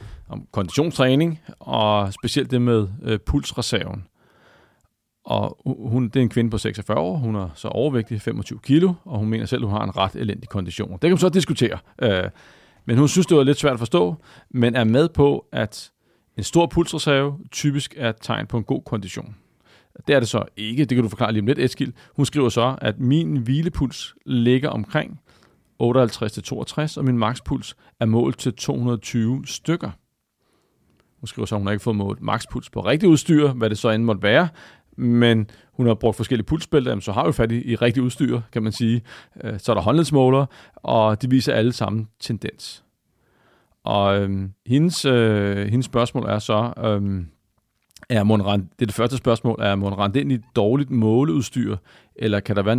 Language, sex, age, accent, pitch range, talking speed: Danish, male, 40-59, native, 110-135 Hz, 185 wpm